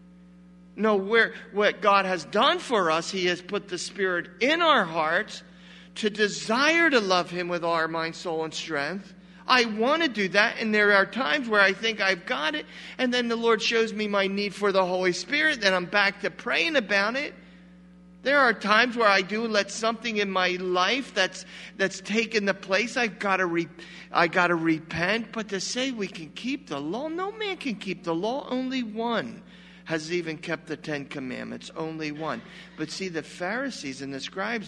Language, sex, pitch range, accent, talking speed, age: English, male, 180-230 Hz, American, 200 wpm, 50-69